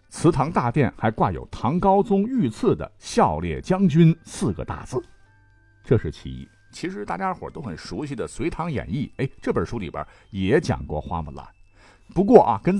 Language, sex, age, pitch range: Chinese, male, 50-69, 95-145 Hz